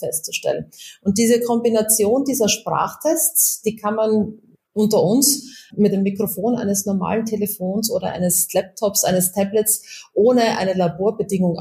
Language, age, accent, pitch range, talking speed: German, 30-49, German, 195-230 Hz, 130 wpm